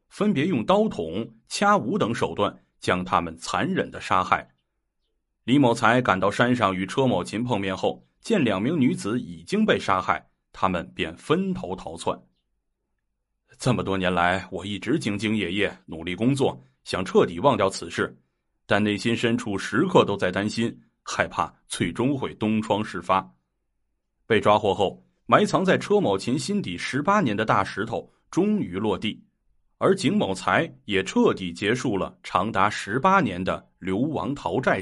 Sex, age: male, 30-49